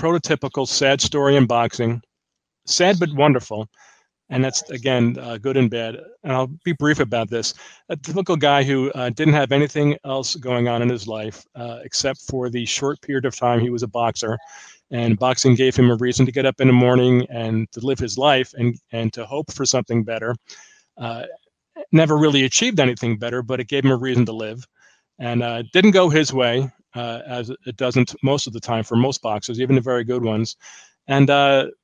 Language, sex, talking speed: English, male, 205 wpm